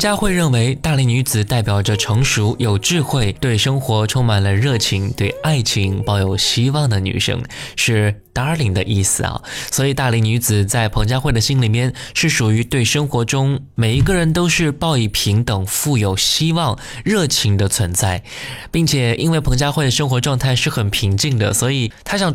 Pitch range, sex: 110-140 Hz, male